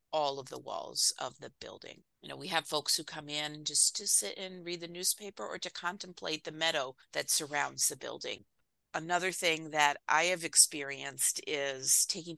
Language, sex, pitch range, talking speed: English, female, 145-180 Hz, 190 wpm